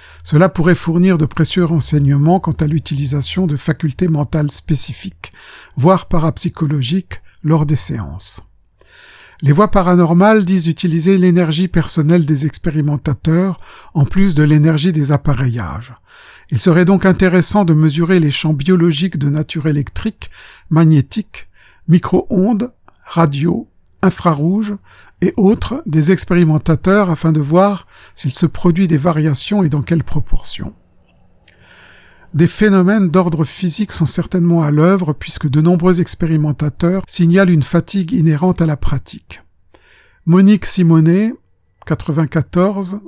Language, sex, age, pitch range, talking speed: French, male, 50-69, 150-185 Hz, 120 wpm